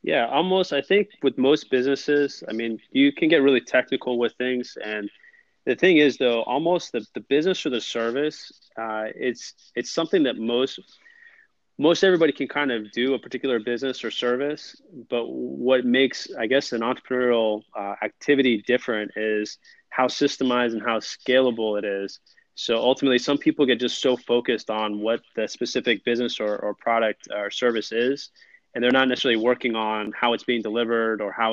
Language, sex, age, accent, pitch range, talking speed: English, male, 20-39, American, 110-130 Hz, 180 wpm